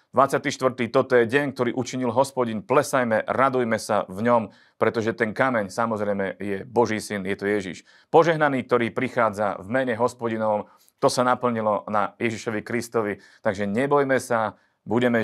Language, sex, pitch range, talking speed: Slovak, male, 110-130 Hz, 150 wpm